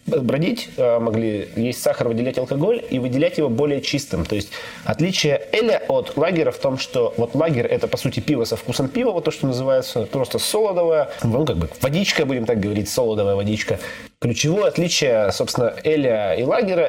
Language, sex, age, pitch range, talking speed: Russian, male, 20-39, 115-160 Hz, 180 wpm